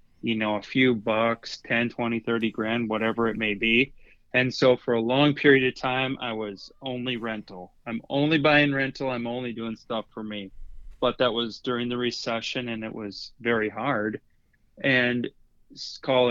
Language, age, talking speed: English, 30-49, 175 wpm